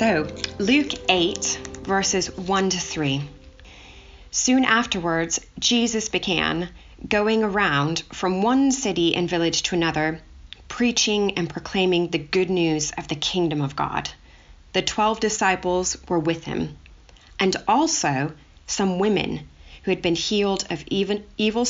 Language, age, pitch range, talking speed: English, 30-49, 155-195 Hz, 130 wpm